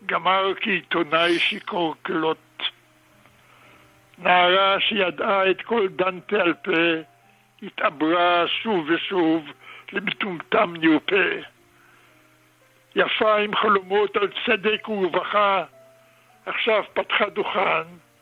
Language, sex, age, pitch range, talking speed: Hebrew, male, 60-79, 160-200 Hz, 80 wpm